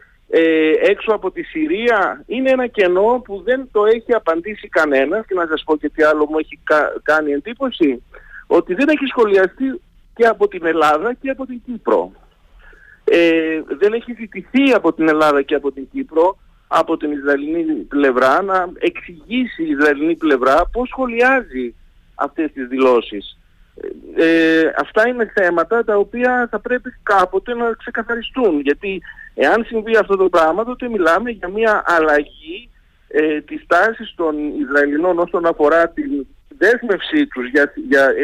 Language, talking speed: Greek, 150 wpm